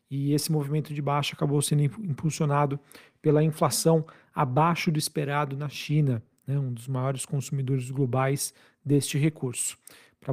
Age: 40-59